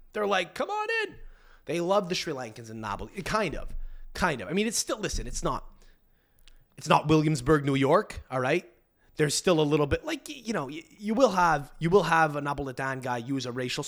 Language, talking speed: English, 215 wpm